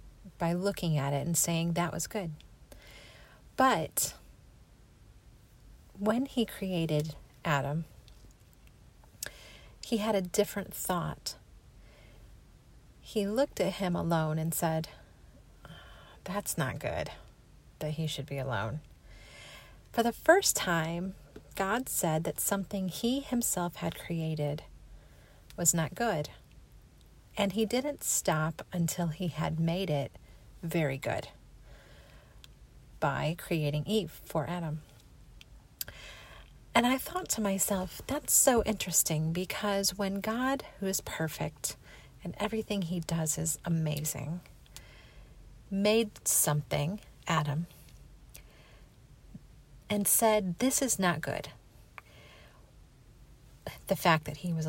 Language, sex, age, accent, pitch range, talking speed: English, female, 40-59, American, 145-200 Hz, 110 wpm